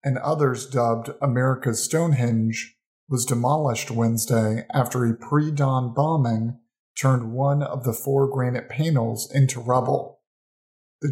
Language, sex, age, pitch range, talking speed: English, male, 40-59, 120-145 Hz, 120 wpm